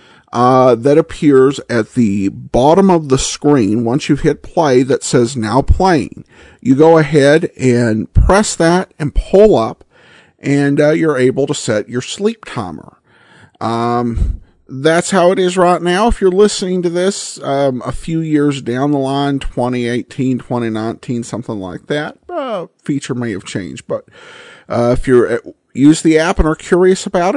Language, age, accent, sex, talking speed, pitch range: English, 50-69, American, male, 165 wpm, 130-185 Hz